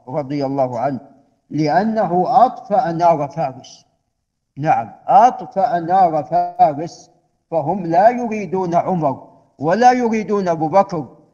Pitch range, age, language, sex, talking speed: 160-220 Hz, 50-69, Arabic, male, 100 wpm